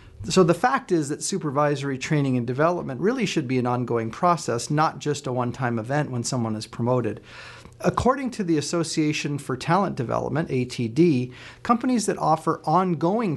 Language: English